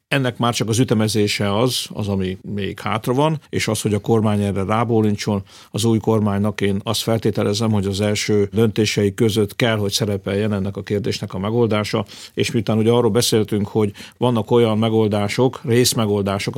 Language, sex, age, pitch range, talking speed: Hungarian, male, 50-69, 105-120 Hz, 170 wpm